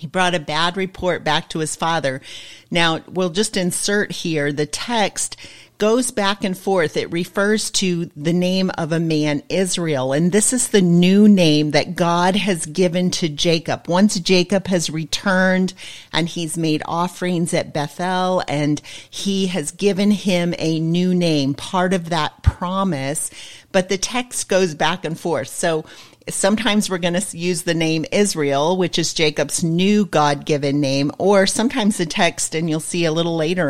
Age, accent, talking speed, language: 40-59, American, 170 wpm, English